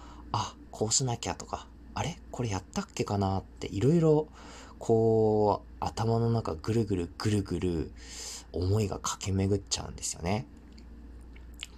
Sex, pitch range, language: male, 75-115 Hz, Japanese